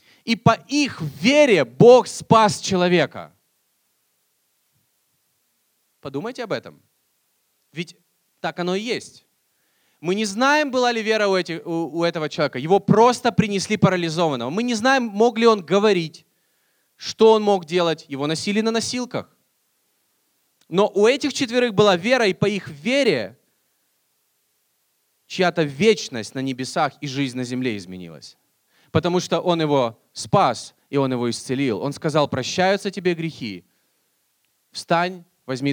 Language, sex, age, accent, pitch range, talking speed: Russian, male, 20-39, native, 145-225 Hz, 130 wpm